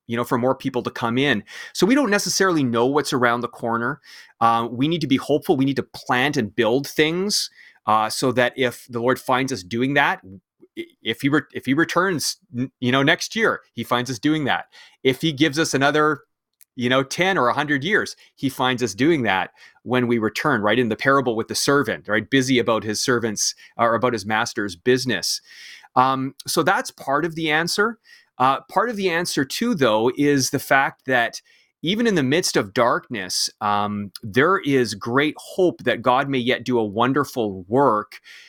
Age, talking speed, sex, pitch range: 30-49, 200 wpm, male, 120-150 Hz